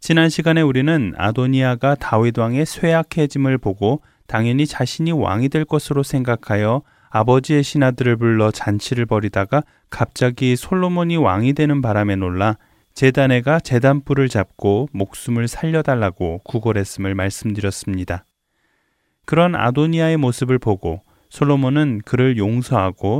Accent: native